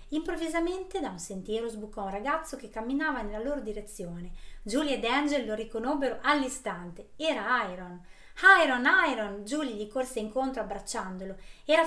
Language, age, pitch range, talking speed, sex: Italian, 20-39, 195-265 Hz, 140 wpm, female